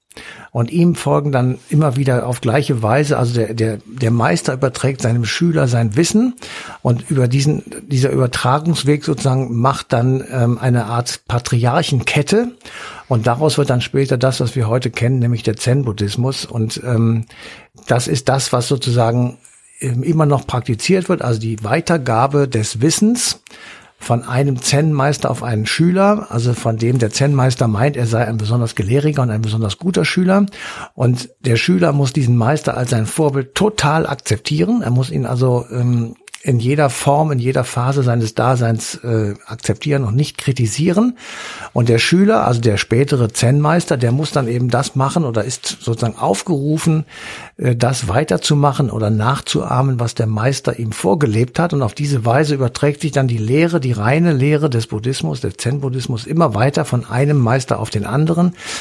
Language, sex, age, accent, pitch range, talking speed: German, male, 60-79, German, 120-150 Hz, 165 wpm